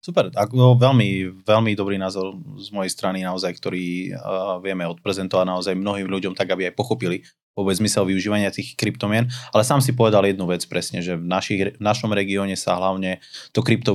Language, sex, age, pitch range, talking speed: Slovak, male, 20-39, 90-105 Hz, 190 wpm